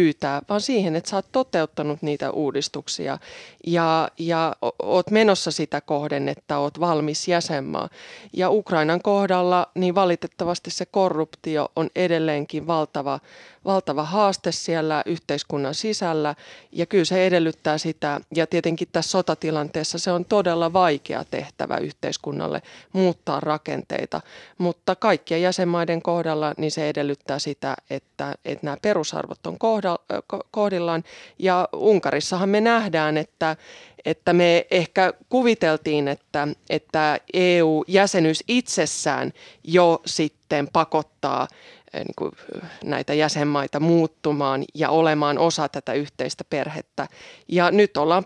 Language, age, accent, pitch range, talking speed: Finnish, 30-49, native, 150-180 Hz, 115 wpm